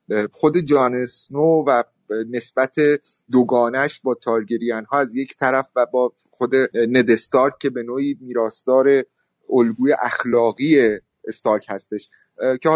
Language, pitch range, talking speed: Persian, 120-155 Hz, 115 wpm